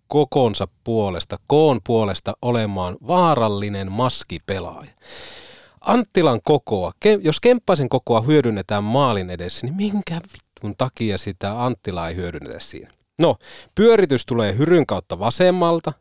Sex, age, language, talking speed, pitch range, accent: male, 30-49, Finnish, 115 wpm, 100-130 Hz, native